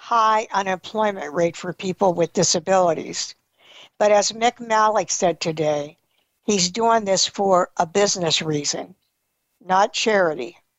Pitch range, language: 180-225 Hz, English